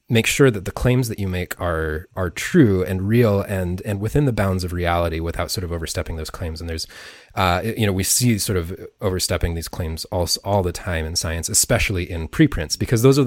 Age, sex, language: 30-49, male, English